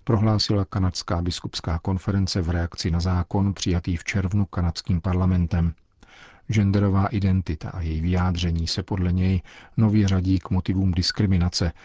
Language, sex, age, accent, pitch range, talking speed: Czech, male, 40-59, native, 90-100 Hz, 130 wpm